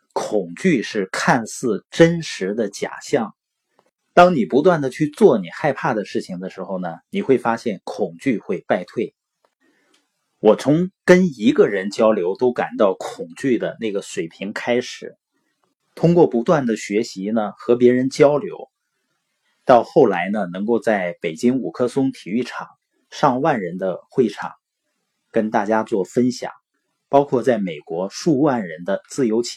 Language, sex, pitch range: Chinese, male, 110-165 Hz